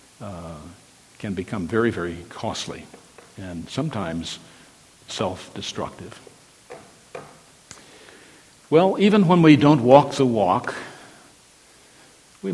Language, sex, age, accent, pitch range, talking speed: English, male, 60-79, American, 115-160 Hz, 85 wpm